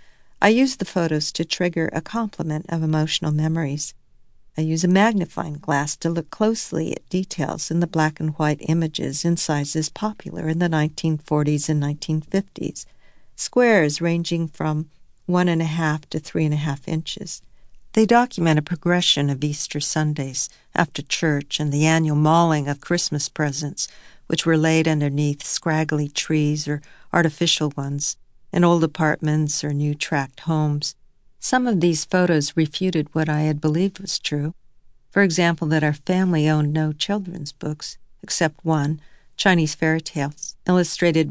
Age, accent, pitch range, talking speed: 50-69, American, 150-170 Hz, 155 wpm